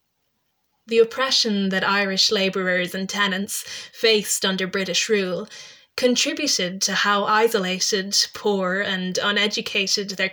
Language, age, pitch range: English, 20-39, 190-220 Hz